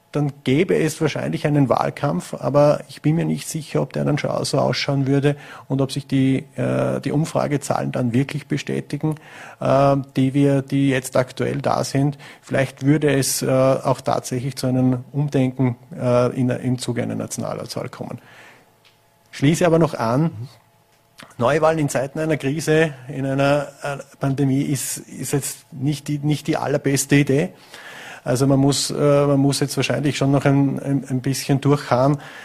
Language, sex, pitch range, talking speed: German, male, 125-145 Hz, 160 wpm